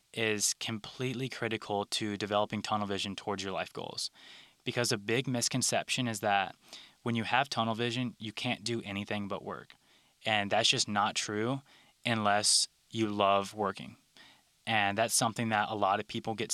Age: 10-29